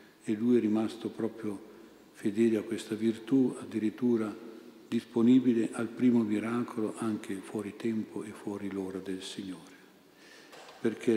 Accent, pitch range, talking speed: native, 105-115 Hz, 125 wpm